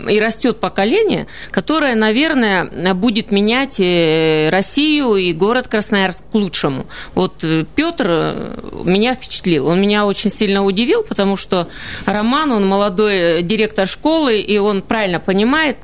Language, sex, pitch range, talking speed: Russian, female, 180-225 Hz, 125 wpm